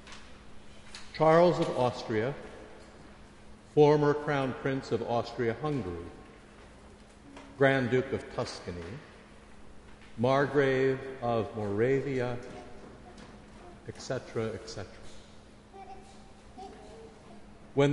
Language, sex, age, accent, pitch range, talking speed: English, male, 60-79, American, 110-135 Hz, 60 wpm